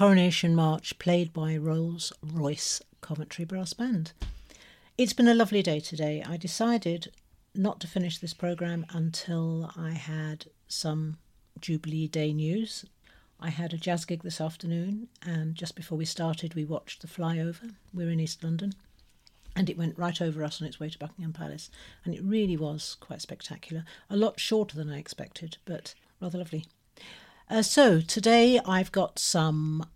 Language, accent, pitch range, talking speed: English, British, 155-180 Hz, 165 wpm